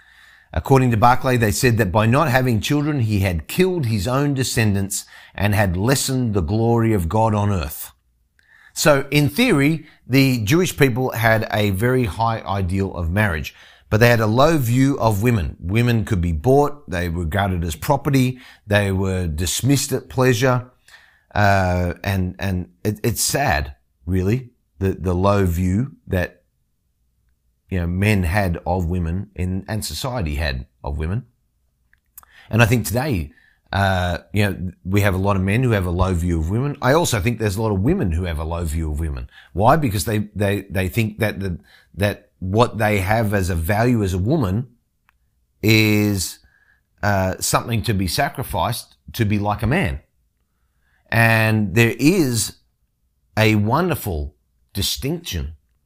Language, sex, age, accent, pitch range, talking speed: English, male, 30-49, Australian, 90-120 Hz, 165 wpm